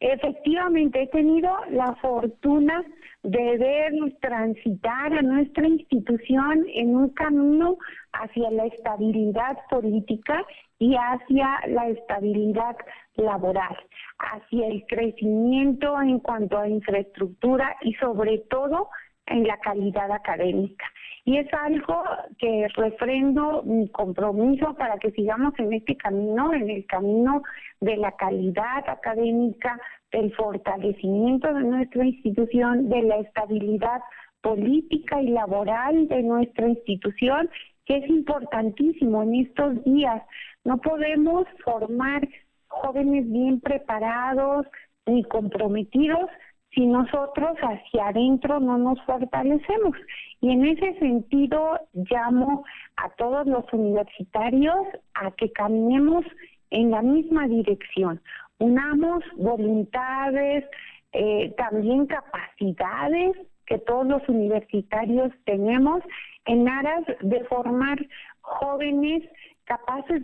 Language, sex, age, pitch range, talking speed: Spanish, female, 50-69, 220-285 Hz, 105 wpm